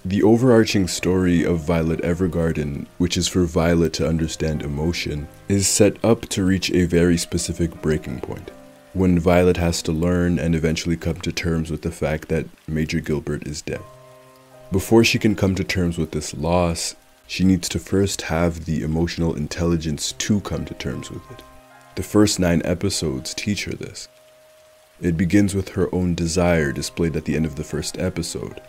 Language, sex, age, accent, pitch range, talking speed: English, male, 20-39, American, 80-90 Hz, 180 wpm